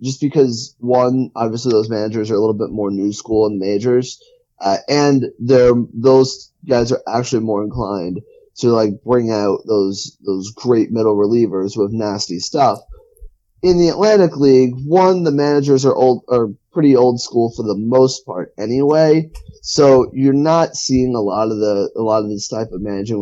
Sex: male